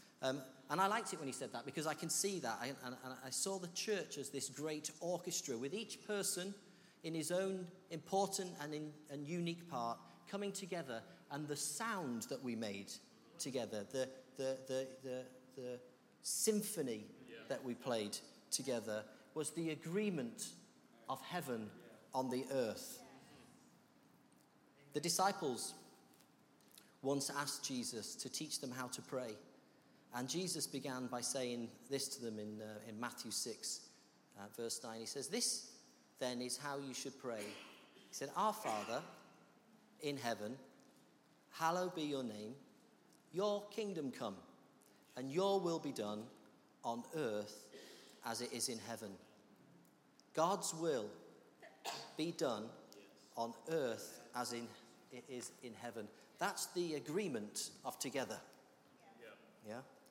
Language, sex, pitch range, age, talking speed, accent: English, male, 125-180 Hz, 40-59, 145 wpm, British